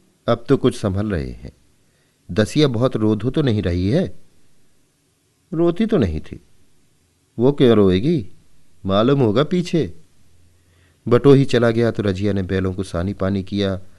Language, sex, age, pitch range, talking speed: Hindi, male, 40-59, 90-115 Hz, 150 wpm